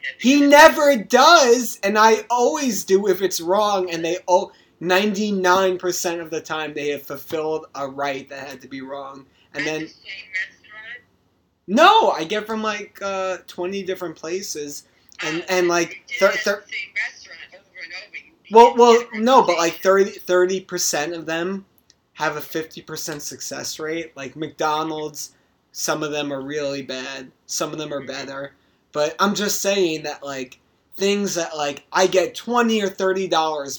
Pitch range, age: 140-190 Hz, 20-39